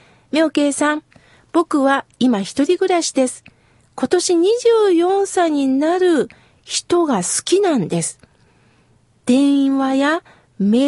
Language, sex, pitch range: Japanese, female, 250-330 Hz